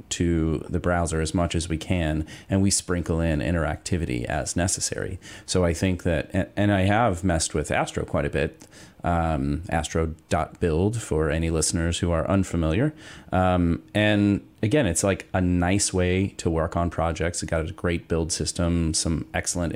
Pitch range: 80-100 Hz